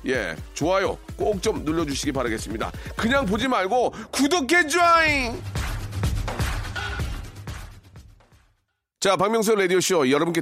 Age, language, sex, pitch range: 40-59, Korean, male, 140-200 Hz